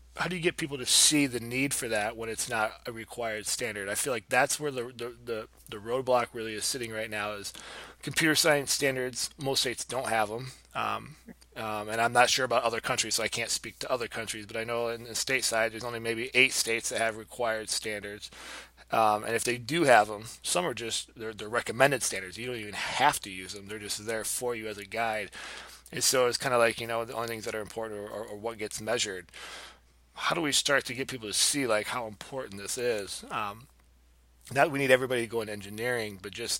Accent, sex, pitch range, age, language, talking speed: American, male, 105-125 Hz, 20-39, English, 245 wpm